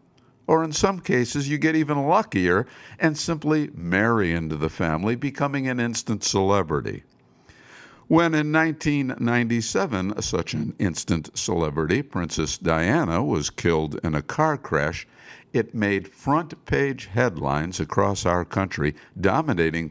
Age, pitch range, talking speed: 60-79, 95-140 Hz, 125 wpm